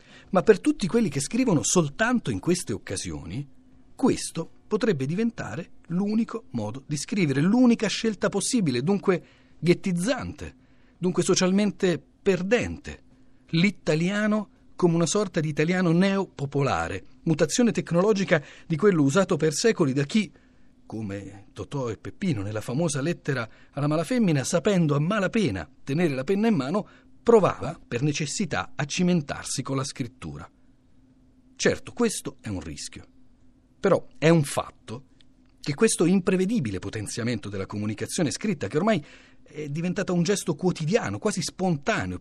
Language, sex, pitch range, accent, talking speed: Italian, male, 130-200 Hz, native, 130 wpm